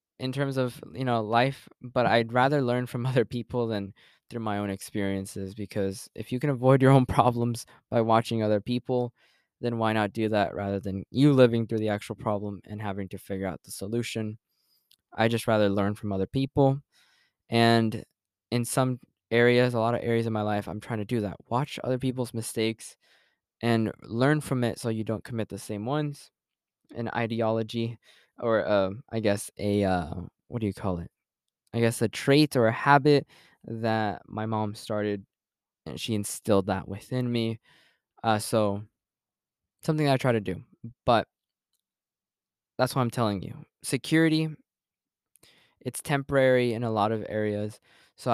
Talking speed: 175 wpm